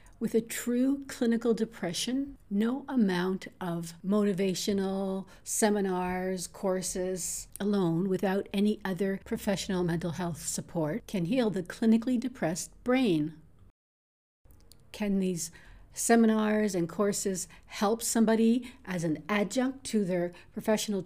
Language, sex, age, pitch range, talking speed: English, female, 60-79, 175-230 Hz, 110 wpm